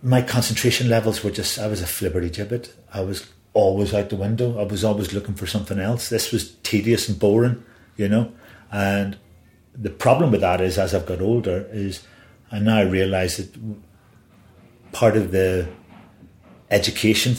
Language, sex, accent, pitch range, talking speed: English, male, British, 95-110 Hz, 170 wpm